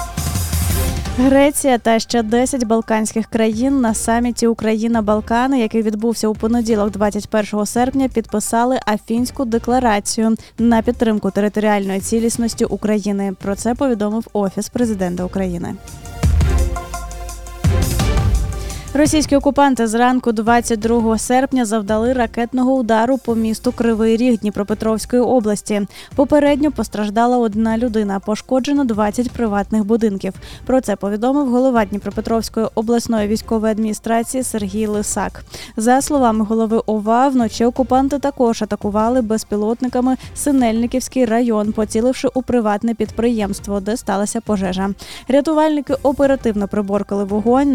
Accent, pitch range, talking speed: native, 210-245 Hz, 105 wpm